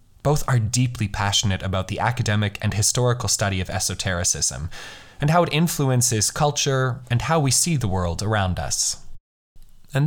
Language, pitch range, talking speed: English, 100-135 Hz, 155 wpm